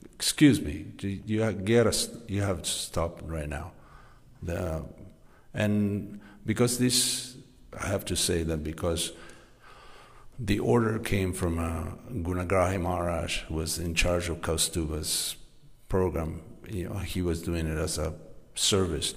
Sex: male